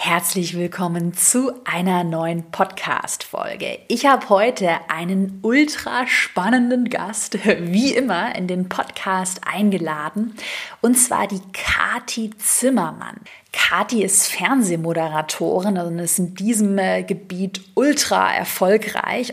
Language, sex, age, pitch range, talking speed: German, female, 30-49, 185-235 Hz, 110 wpm